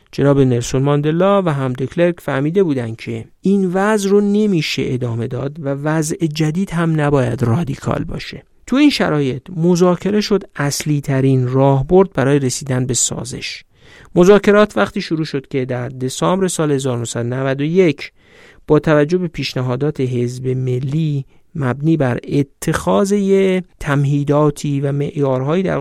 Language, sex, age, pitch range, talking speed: Persian, male, 50-69, 130-180 Hz, 135 wpm